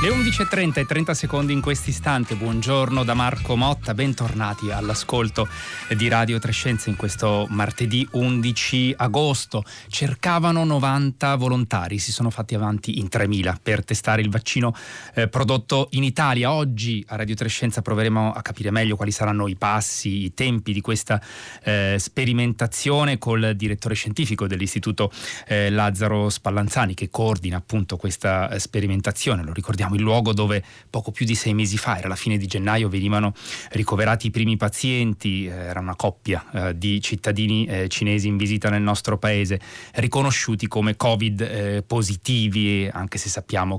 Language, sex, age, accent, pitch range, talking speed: Italian, male, 30-49, native, 105-120 Hz, 150 wpm